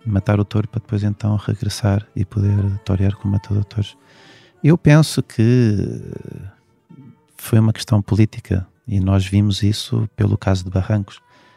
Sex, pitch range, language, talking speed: male, 100-120 Hz, Portuguese, 145 wpm